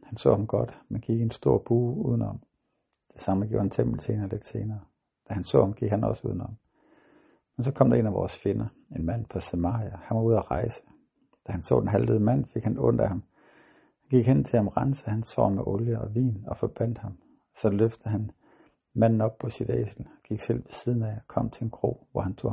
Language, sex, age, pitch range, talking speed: Danish, male, 60-79, 100-120 Hz, 240 wpm